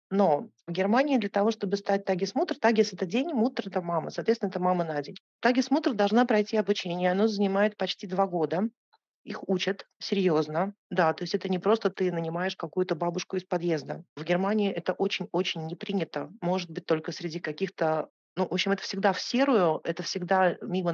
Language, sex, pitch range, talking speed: Russian, female, 180-220 Hz, 185 wpm